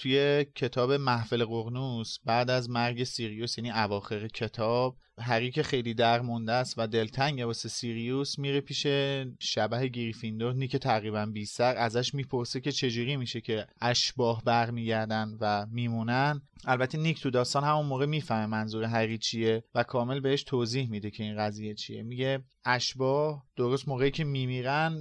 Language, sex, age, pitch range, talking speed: Persian, male, 30-49, 115-140 Hz, 145 wpm